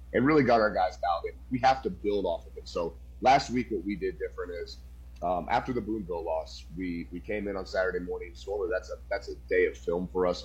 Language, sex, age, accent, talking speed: English, male, 30-49, American, 255 wpm